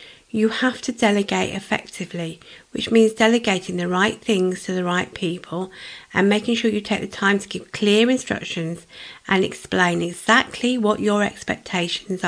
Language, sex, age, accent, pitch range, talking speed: English, female, 50-69, British, 185-230 Hz, 155 wpm